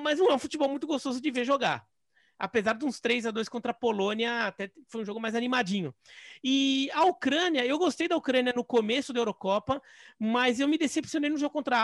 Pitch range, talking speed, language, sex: 220-275 Hz, 215 wpm, Portuguese, male